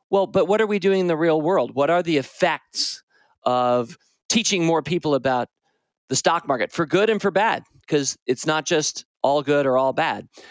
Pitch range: 140-190 Hz